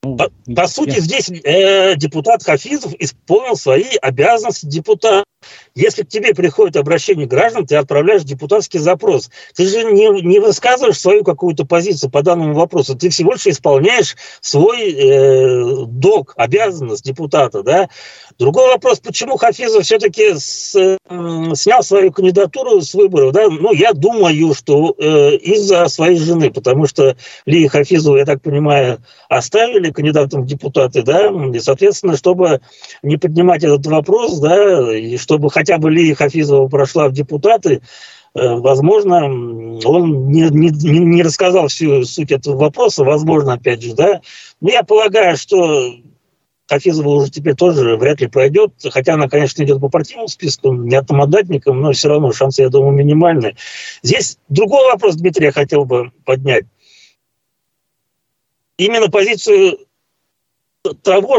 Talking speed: 140 wpm